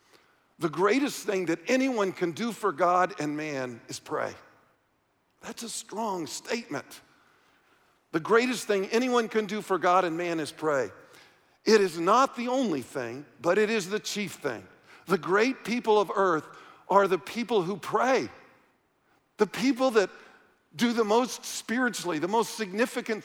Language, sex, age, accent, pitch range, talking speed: English, male, 50-69, American, 150-235 Hz, 155 wpm